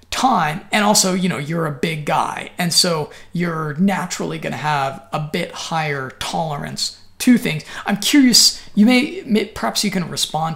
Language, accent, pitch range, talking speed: English, American, 160-200 Hz, 175 wpm